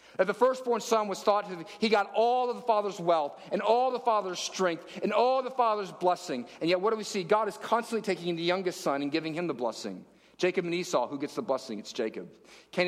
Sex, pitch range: male, 165-215 Hz